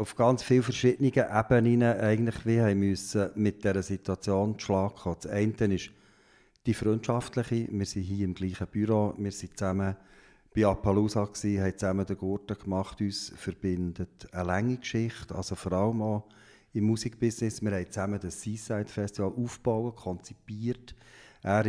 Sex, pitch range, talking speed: male, 100-115 Hz, 145 wpm